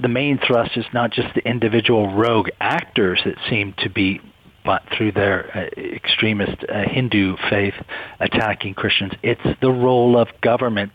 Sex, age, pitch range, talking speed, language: male, 40-59, 105-120 Hz, 150 wpm, English